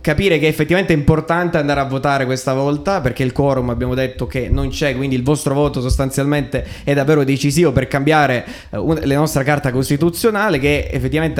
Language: Italian